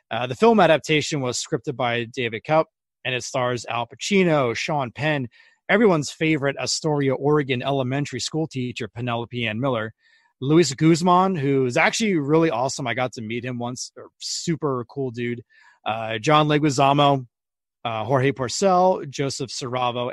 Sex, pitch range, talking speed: male, 120-155 Hz, 145 wpm